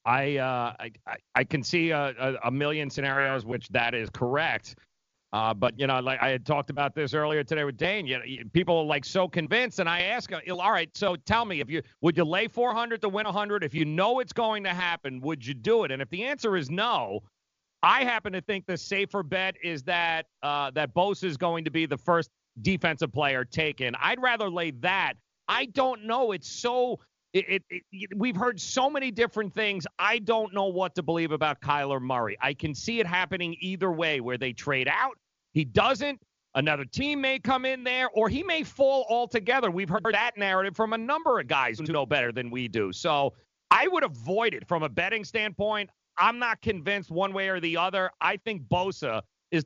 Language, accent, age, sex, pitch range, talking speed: English, American, 40-59, male, 140-210 Hz, 210 wpm